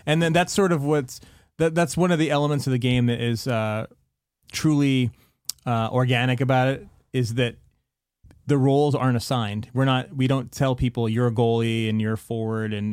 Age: 30-49